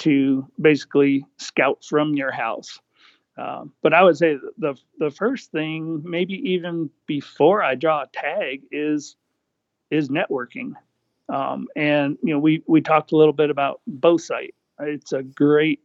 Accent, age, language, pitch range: American, 40-59, English, 140-165 Hz